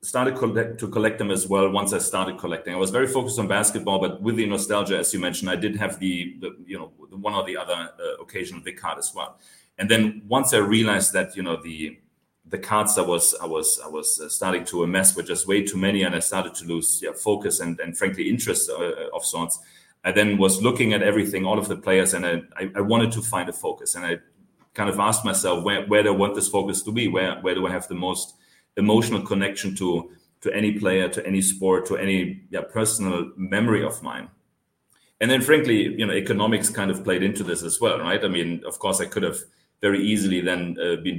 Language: English